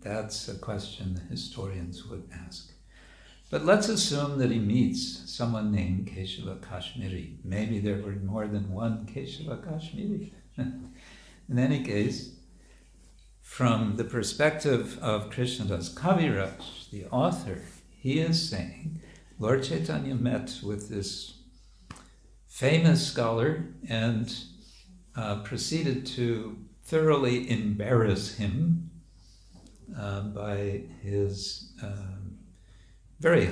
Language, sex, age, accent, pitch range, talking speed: English, male, 60-79, American, 95-125 Hz, 105 wpm